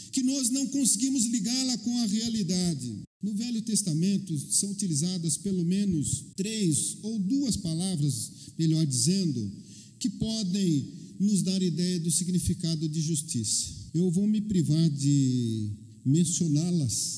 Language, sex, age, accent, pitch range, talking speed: Portuguese, male, 50-69, Brazilian, 165-235 Hz, 125 wpm